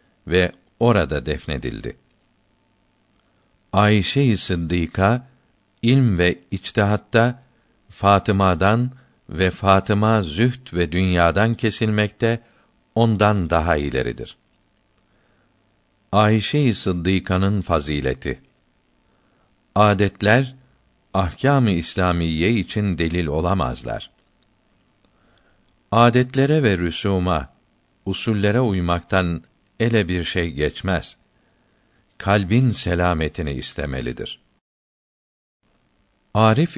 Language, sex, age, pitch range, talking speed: Turkish, male, 60-79, 90-110 Hz, 65 wpm